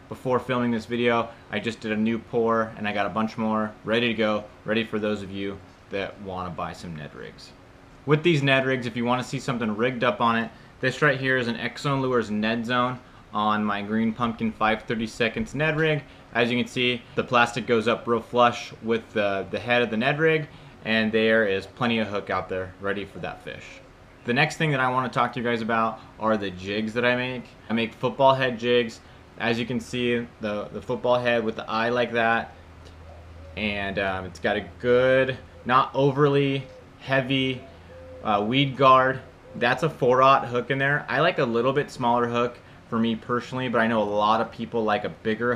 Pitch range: 105-125 Hz